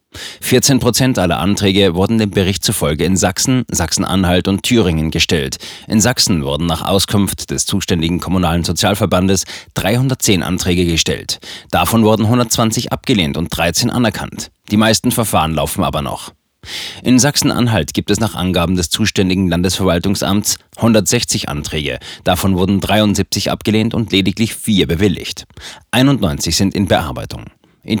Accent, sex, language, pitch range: German, male, German, 90-110 Hz